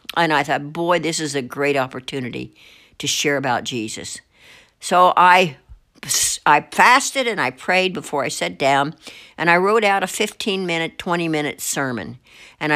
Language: English